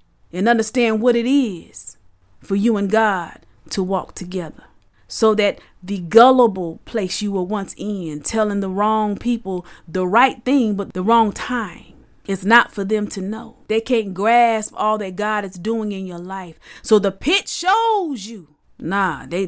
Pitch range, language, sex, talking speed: 180-215 Hz, English, female, 175 wpm